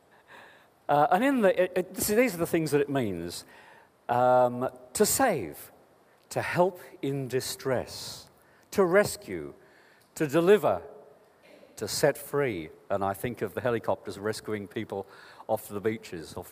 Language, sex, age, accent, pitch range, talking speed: English, male, 50-69, British, 120-175 Hz, 140 wpm